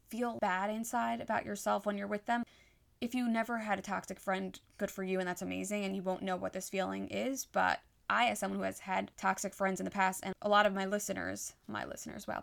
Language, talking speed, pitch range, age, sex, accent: English, 245 wpm, 185-220 Hz, 10-29, female, American